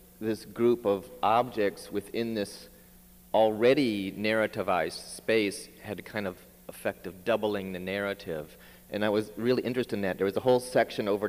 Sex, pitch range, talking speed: male, 90-110 Hz, 165 wpm